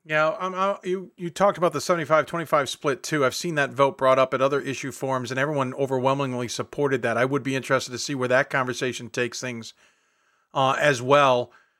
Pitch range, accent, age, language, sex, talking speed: 125-150 Hz, American, 40-59, English, male, 215 wpm